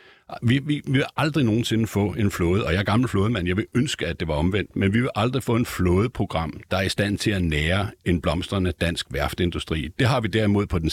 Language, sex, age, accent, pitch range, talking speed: Danish, male, 60-79, native, 90-115 Hz, 240 wpm